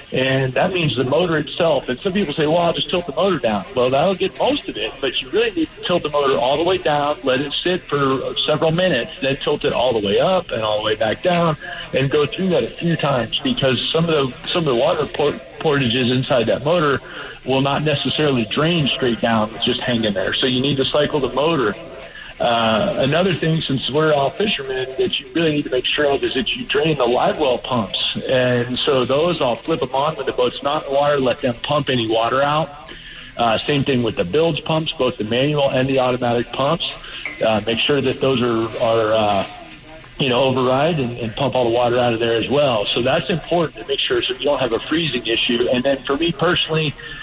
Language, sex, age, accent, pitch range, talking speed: English, male, 50-69, American, 125-155 Hz, 240 wpm